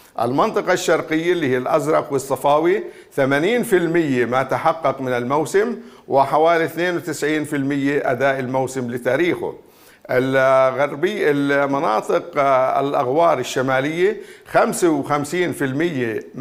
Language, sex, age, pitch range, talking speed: Arabic, male, 50-69, 140-180 Hz, 75 wpm